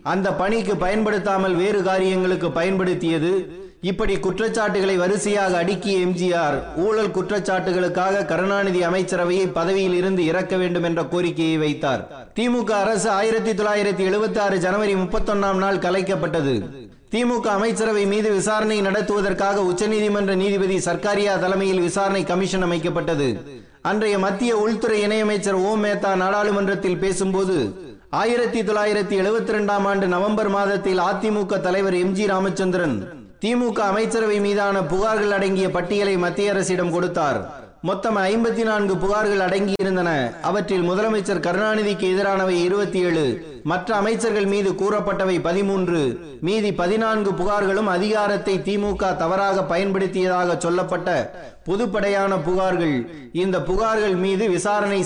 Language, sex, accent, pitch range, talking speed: Tamil, male, native, 185-205 Hz, 95 wpm